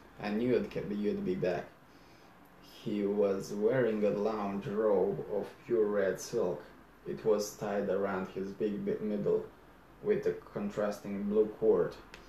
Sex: male